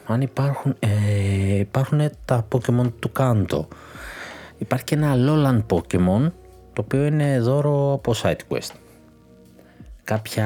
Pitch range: 90-130 Hz